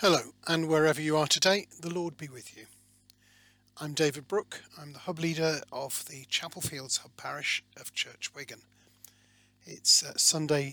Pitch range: 115-165 Hz